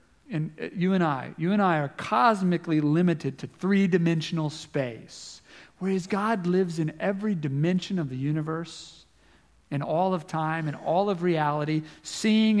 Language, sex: English, male